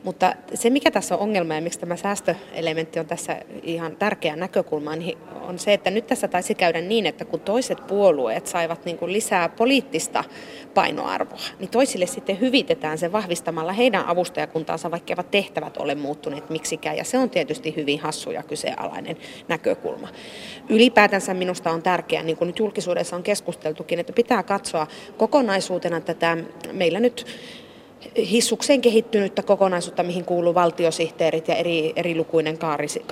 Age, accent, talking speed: 30-49, native, 145 wpm